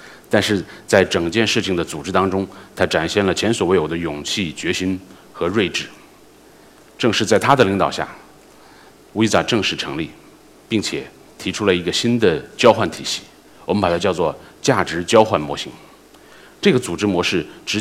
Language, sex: Chinese, male